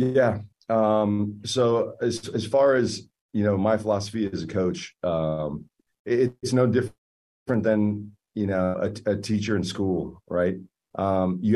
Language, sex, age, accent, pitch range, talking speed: English, male, 40-59, American, 95-110 Hz, 155 wpm